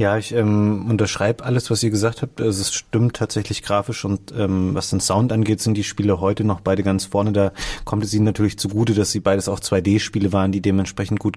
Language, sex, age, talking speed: German, male, 30-49, 220 wpm